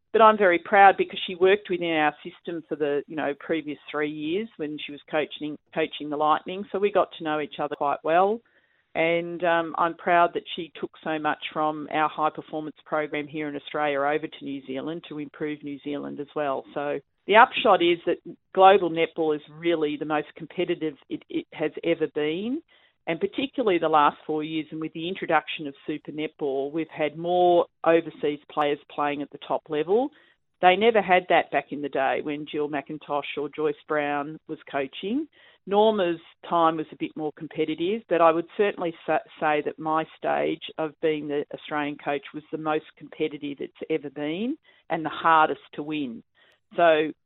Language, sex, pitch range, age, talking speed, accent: English, female, 150-175 Hz, 40-59, 190 wpm, Australian